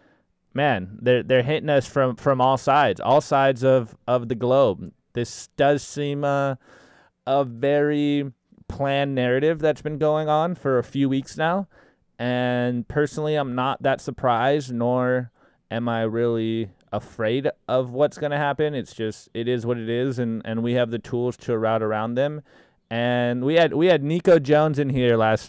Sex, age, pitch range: male, 20-39, 110-135 Hz